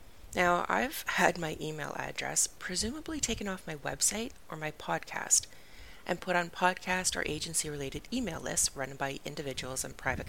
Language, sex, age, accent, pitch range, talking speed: English, female, 30-49, American, 130-200 Hz, 155 wpm